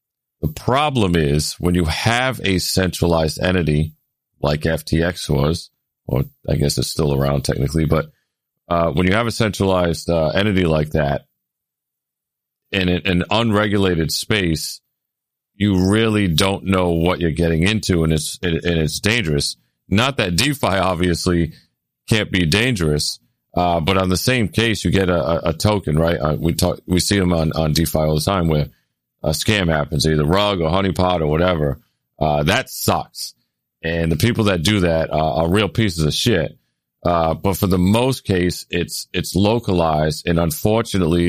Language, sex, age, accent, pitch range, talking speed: English, male, 40-59, American, 80-95 Hz, 165 wpm